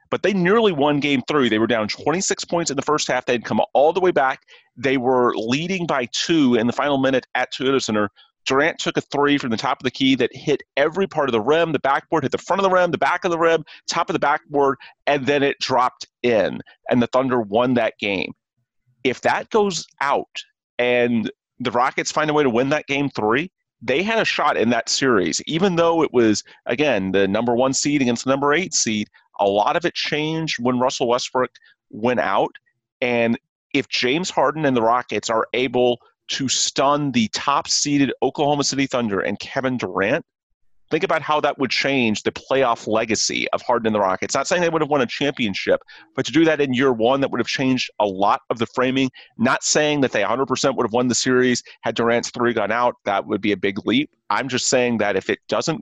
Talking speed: 225 wpm